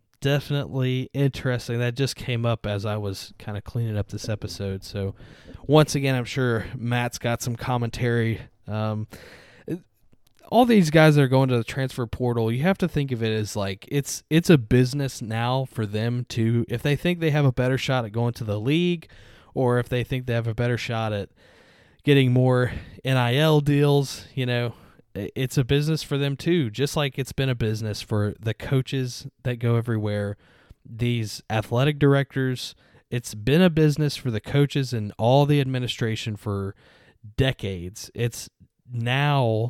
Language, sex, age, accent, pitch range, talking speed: English, male, 20-39, American, 115-140 Hz, 175 wpm